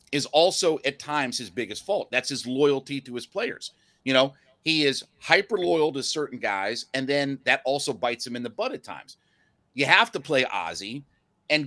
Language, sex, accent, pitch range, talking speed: English, male, American, 125-160 Hz, 195 wpm